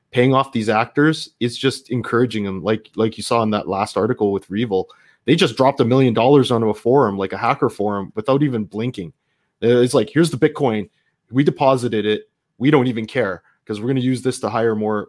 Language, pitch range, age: English, 105-135 Hz, 20-39